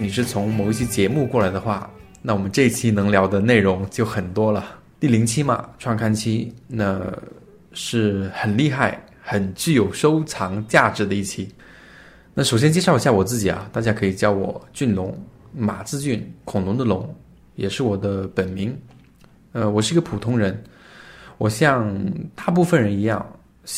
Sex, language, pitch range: male, Chinese, 100-120 Hz